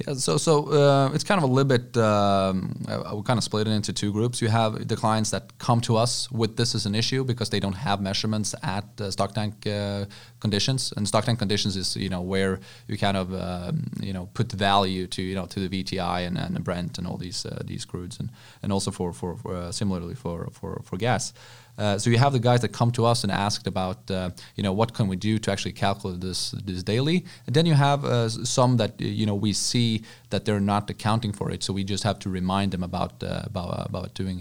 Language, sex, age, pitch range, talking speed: English, male, 20-39, 95-115 Hz, 250 wpm